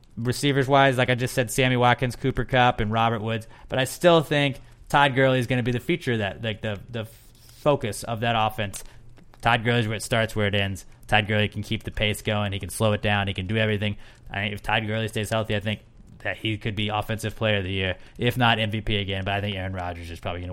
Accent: American